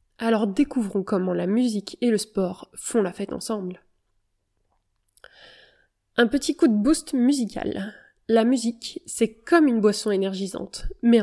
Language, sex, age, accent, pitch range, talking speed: French, female, 20-39, French, 195-240 Hz, 140 wpm